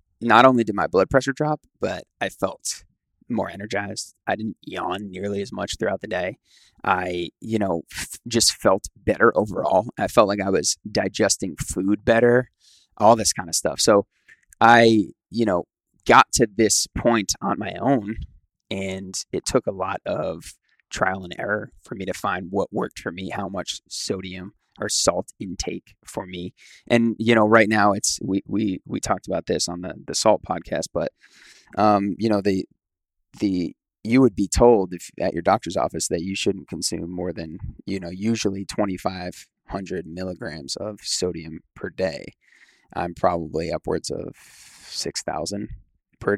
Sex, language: male, English